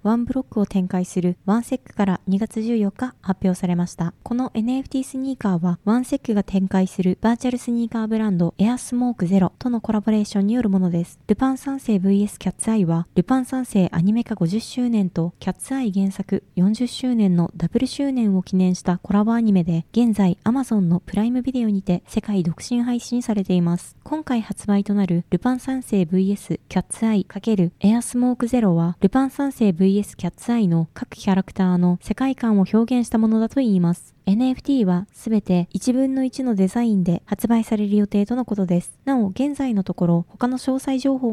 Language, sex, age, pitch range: Japanese, female, 20-39, 185-245 Hz